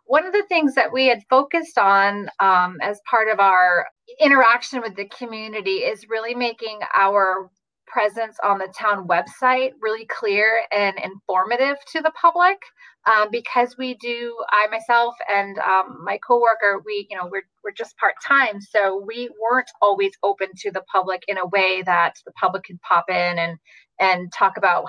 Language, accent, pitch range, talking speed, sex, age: English, American, 190-250 Hz, 175 wpm, female, 30-49